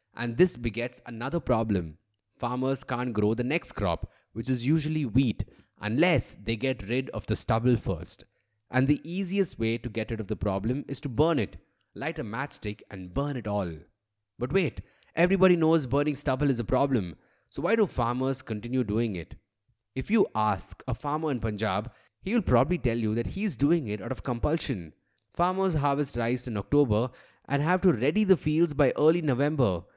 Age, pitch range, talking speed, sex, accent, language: 20-39, 110-150 Hz, 185 wpm, male, Indian, English